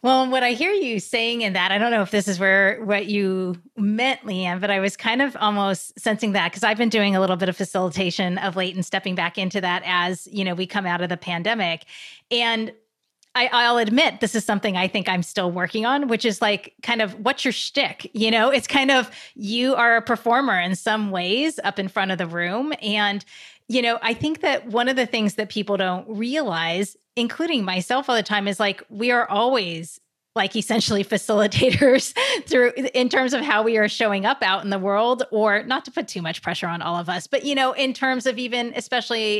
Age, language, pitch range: 30-49, English, 190-245 Hz